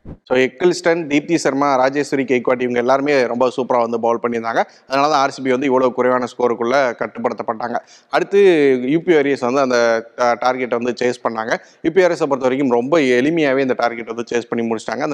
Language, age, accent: Tamil, 30-49, native